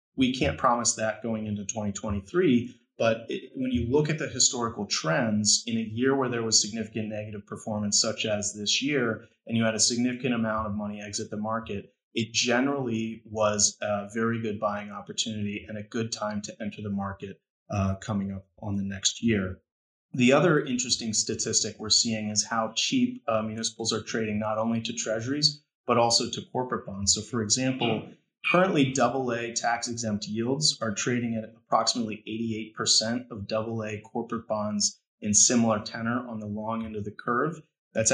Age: 30-49